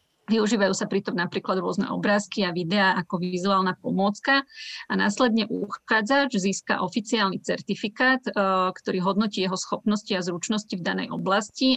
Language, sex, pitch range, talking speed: Slovak, female, 185-215 Hz, 135 wpm